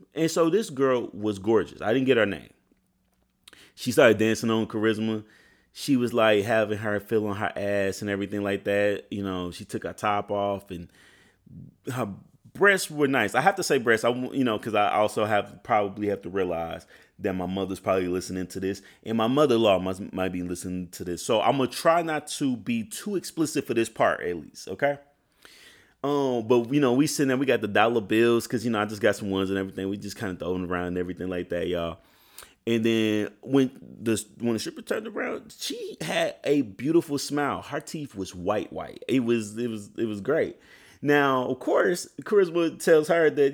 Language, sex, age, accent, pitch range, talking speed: English, male, 30-49, American, 100-140 Hz, 210 wpm